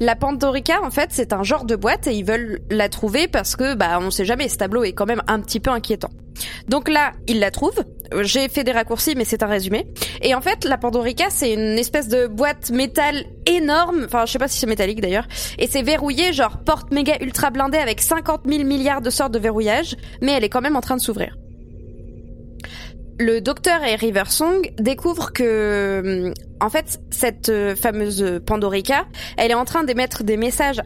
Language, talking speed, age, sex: French, 205 wpm, 20-39, female